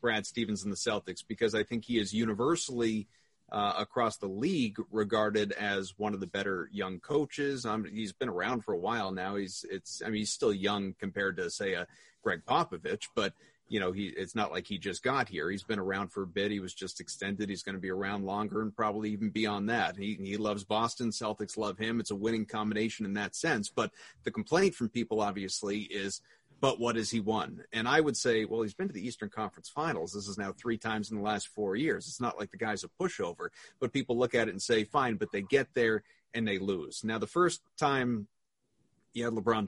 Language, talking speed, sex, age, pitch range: English, 230 wpm, male, 30-49, 100-115 Hz